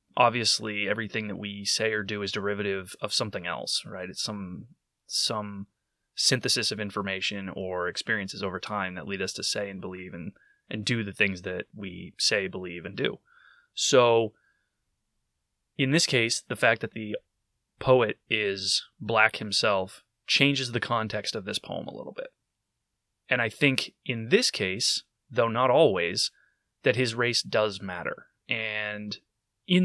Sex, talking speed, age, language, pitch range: male, 155 wpm, 20-39, English, 100-125 Hz